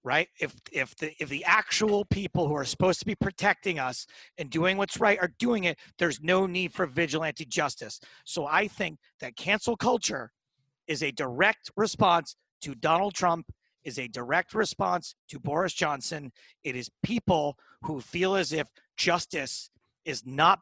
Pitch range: 150-190 Hz